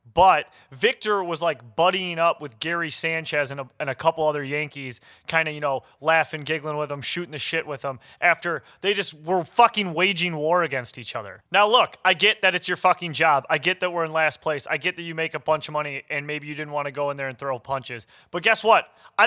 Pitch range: 155-190 Hz